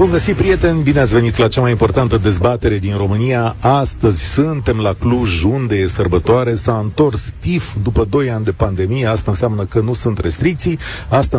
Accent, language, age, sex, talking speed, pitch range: native, Romanian, 40-59, male, 185 wpm, 100-125 Hz